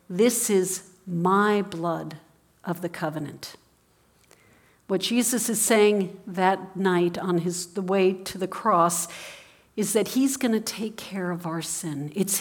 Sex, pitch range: female, 175-215 Hz